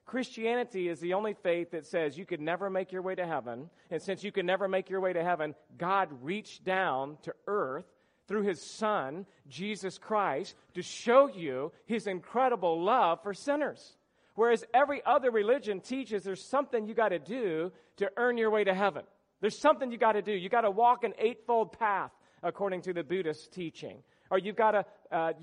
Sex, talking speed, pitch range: male, 195 wpm, 165-210 Hz